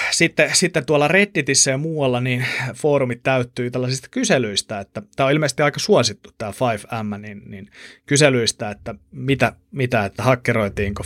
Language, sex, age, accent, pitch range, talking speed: Finnish, male, 30-49, native, 110-145 Hz, 145 wpm